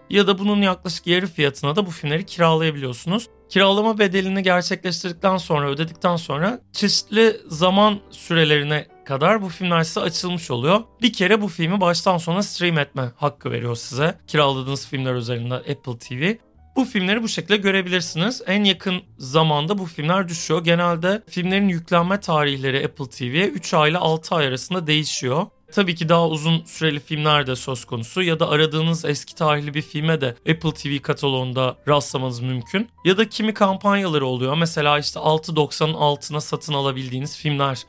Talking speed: 155 wpm